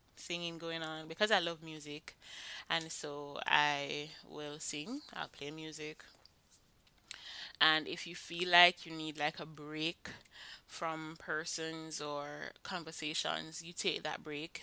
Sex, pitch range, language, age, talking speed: female, 150-170 Hz, English, 20-39, 135 wpm